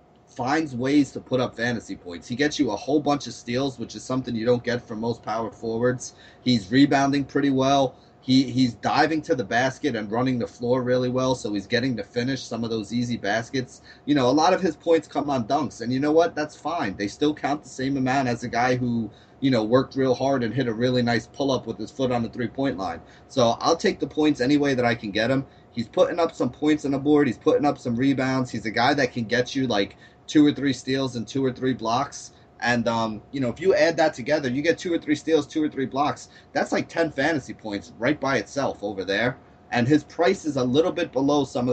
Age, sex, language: 30-49, male, English